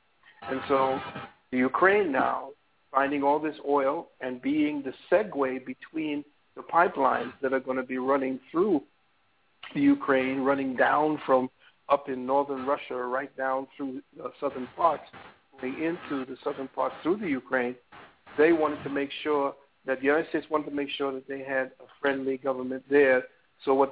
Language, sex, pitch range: English, male, 130-145 Hz